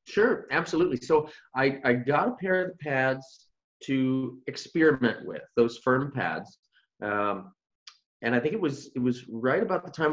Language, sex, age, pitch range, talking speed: English, male, 30-49, 125-180 Hz, 170 wpm